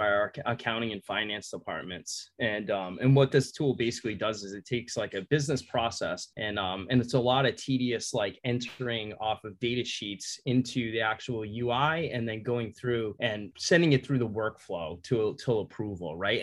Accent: American